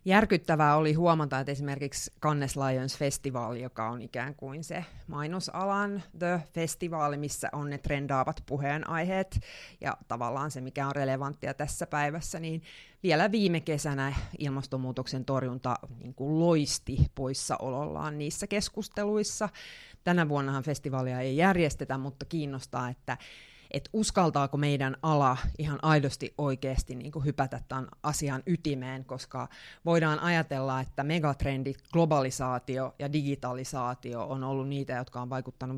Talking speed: 125 wpm